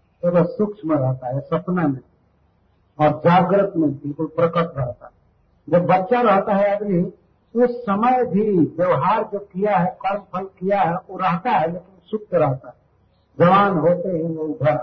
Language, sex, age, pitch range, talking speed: Hindi, male, 50-69, 130-200 Hz, 175 wpm